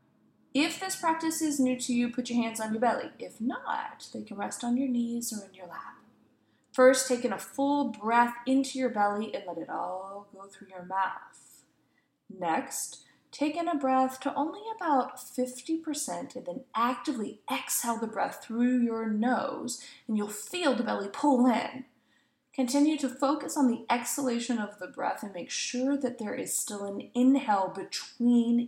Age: 20-39